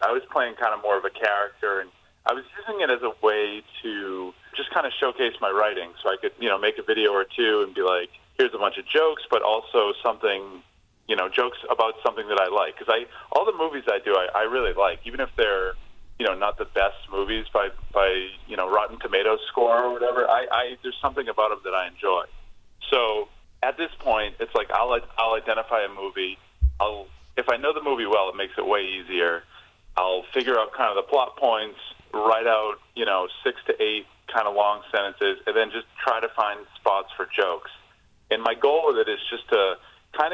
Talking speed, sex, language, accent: 225 wpm, male, English, American